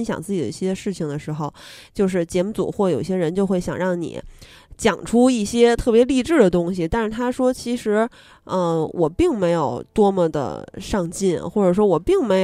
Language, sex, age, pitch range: Chinese, female, 20-39, 180-245 Hz